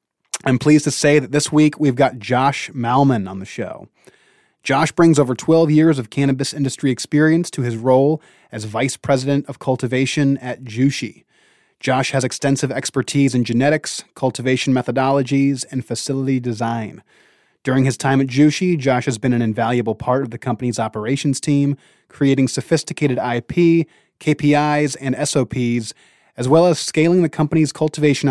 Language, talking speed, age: English, 155 wpm, 30-49